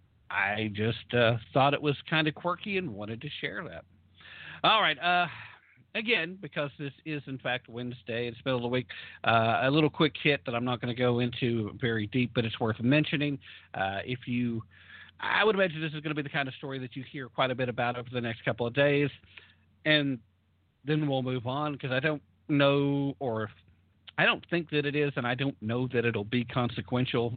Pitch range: 115-145 Hz